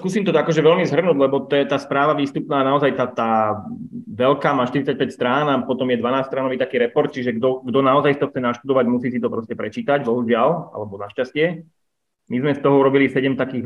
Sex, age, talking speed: male, 20-39, 200 wpm